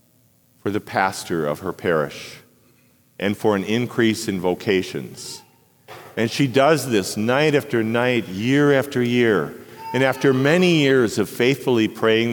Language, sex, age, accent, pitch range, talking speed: English, male, 50-69, American, 100-130 Hz, 140 wpm